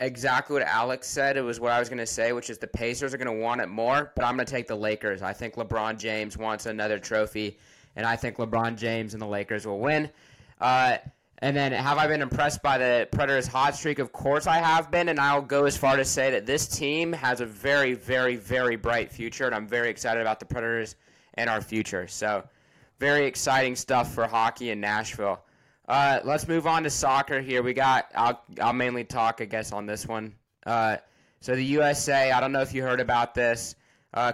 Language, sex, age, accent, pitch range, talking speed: English, male, 20-39, American, 115-140 Hz, 225 wpm